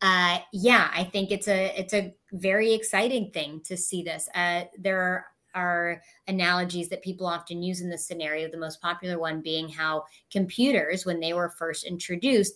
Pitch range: 170-205 Hz